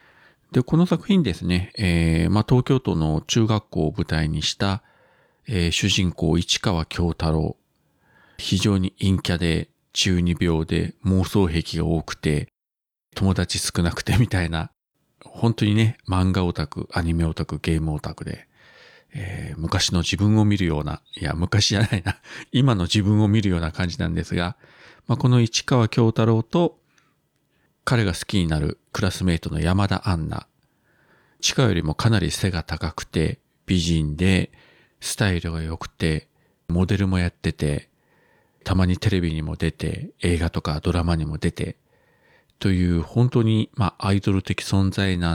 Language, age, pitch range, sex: Japanese, 40-59, 85-105 Hz, male